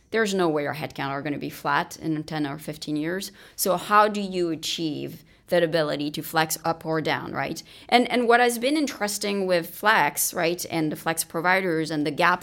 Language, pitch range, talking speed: English, 165-205 Hz, 210 wpm